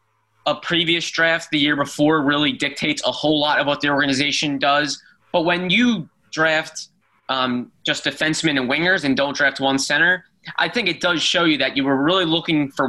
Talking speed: 195 wpm